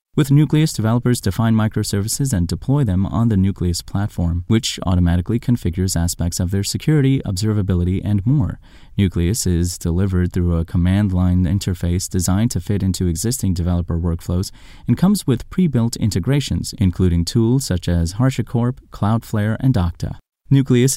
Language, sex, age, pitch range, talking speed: English, male, 30-49, 90-120 Hz, 145 wpm